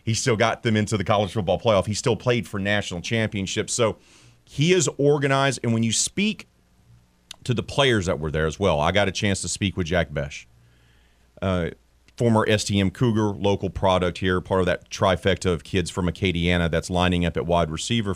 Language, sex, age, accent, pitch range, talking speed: English, male, 40-59, American, 90-130 Hz, 200 wpm